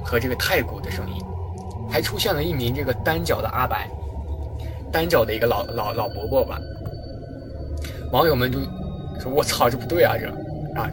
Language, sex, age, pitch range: Chinese, male, 20-39, 90-140 Hz